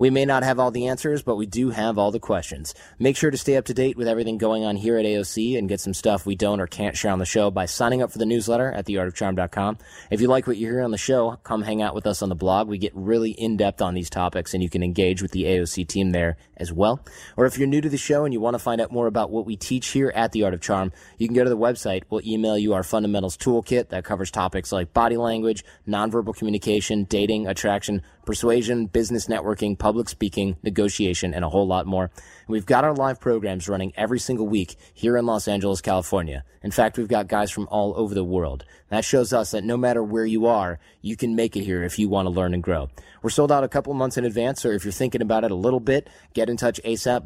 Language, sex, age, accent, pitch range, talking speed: English, male, 20-39, American, 100-120 Hz, 260 wpm